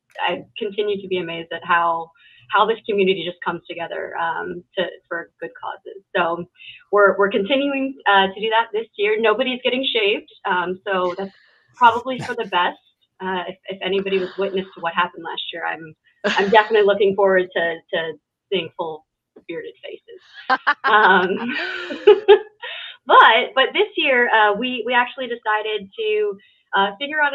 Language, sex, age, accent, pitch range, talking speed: English, female, 20-39, American, 185-230 Hz, 160 wpm